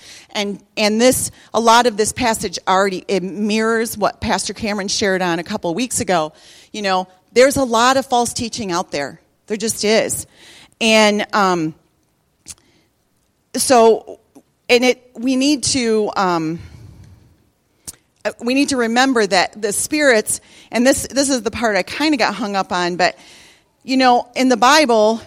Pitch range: 180-235 Hz